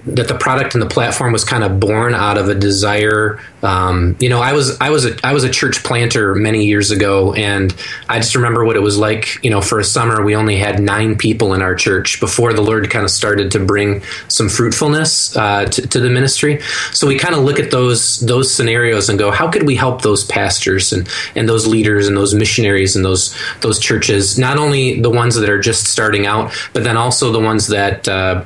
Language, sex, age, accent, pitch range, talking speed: English, male, 20-39, American, 100-120 Hz, 230 wpm